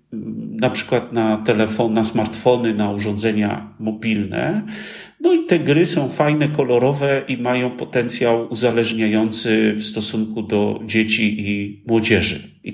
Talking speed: 125 wpm